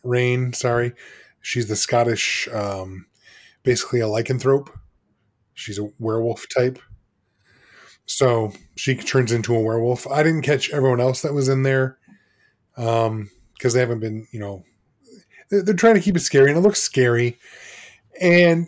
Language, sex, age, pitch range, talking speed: English, male, 20-39, 115-140 Hz, 150 wpm